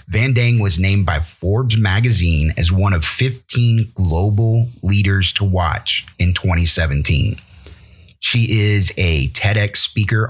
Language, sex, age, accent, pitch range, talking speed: English, male, 30-49, American, 90-110 Hz, 130 wpm